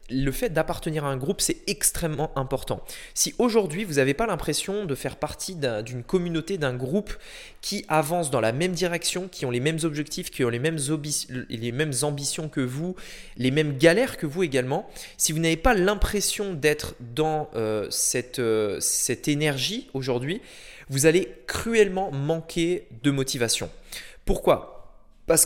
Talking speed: 160 wpm